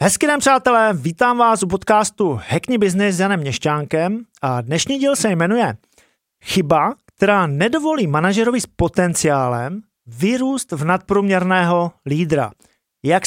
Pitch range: 160-225 Hz